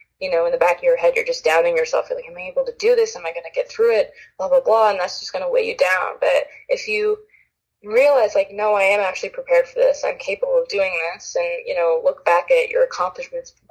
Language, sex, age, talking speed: English, female, 20-39, 275 wpm